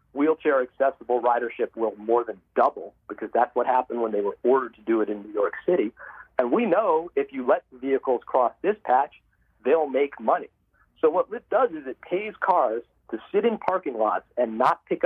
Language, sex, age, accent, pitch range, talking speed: English, male, 40-59, American, 130-215 Hz, 205 wpm